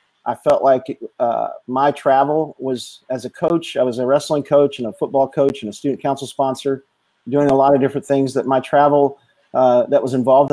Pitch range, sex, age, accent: 125-140 Hz, male, 40-59, American